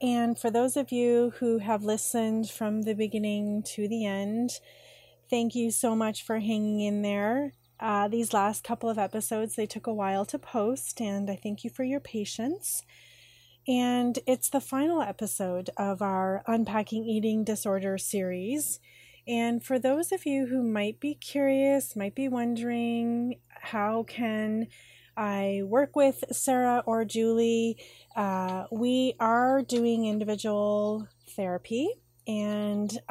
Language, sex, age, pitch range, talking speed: English, female, 30-49, 200-240 Hz, 145 wpm